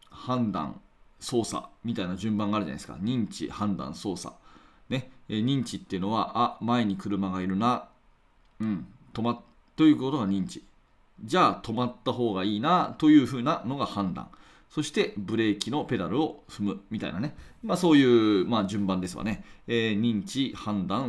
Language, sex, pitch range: Japanese, male, 100-135 Hz